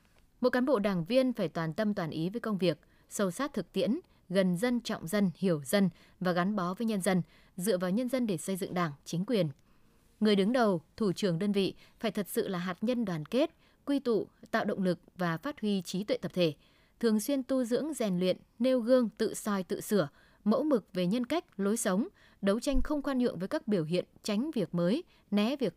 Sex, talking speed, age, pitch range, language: female, 230 wpm, 20-39, 180-240 Hz, Vietnamese